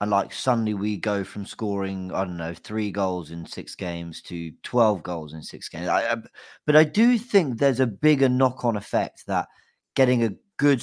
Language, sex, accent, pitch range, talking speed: English, male, British, 105-135 Hz, 200 wpm